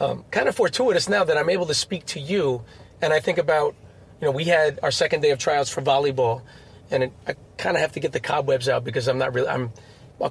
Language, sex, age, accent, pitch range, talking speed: English, male, 30-49, American, 120-170 Hz, 250 wpm